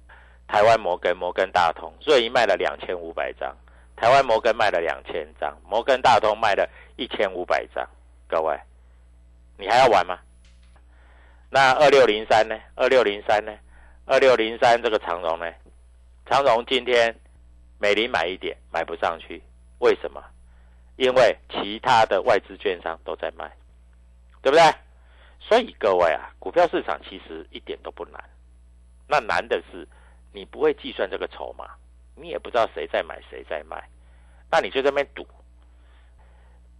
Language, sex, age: Chinese, male, 50-69